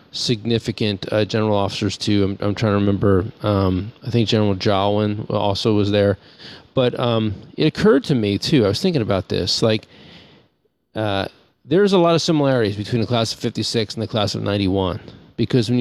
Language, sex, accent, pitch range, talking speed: English, male, American, 100-120 Hz, 185 wpm